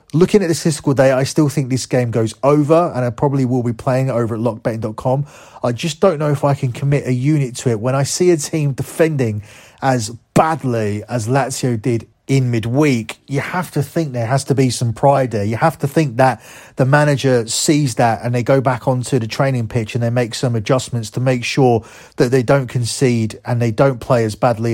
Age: 30-49